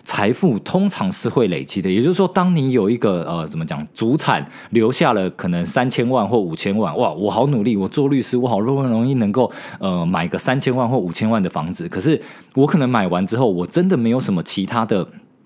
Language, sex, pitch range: Chinese, male, 115-165 Hz